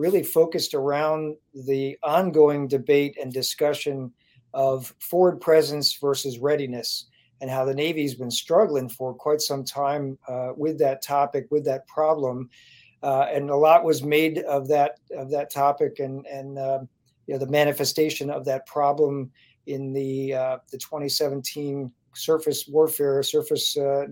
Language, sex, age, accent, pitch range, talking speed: English, male, 50-69, American, 135-150 Hz, 145 wpm